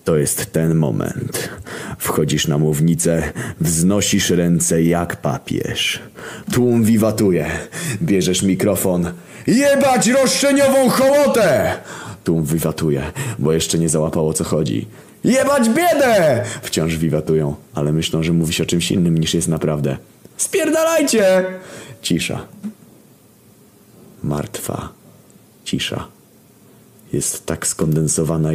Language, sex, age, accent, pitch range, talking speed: Polish, male, 30-49, native, 85-135 Hz, 100 wpm